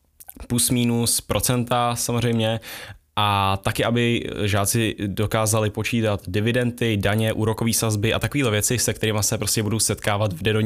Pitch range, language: 100-115 Hz, Czech